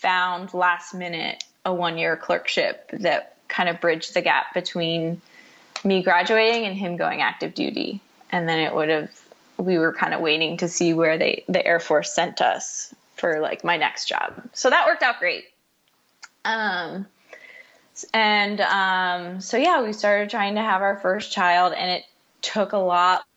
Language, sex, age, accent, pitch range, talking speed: English, female, 20-39, American, 175-215 Hz, 175 wpm